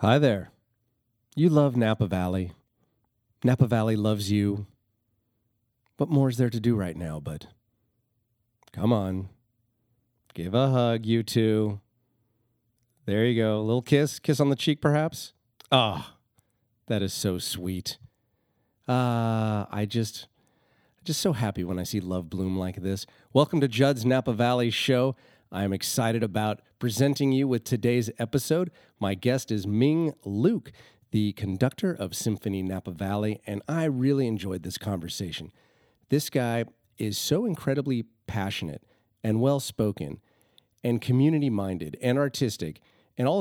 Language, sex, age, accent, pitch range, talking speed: English, male, 40-59, American, 105-130 Hz, 140 wpm